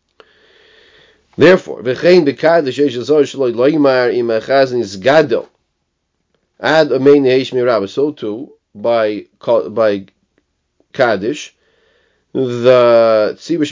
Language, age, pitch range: English, 30-49, 125-150 Hz